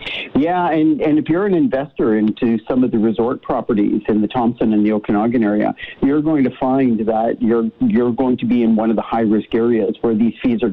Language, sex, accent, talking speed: English, male, American, 225 wpm